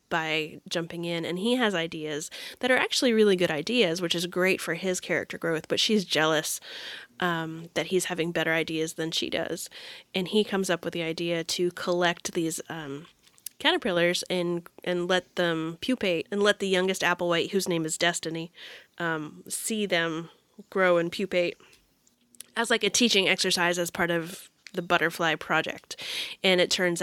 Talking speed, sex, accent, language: 175 wpm, female, American, English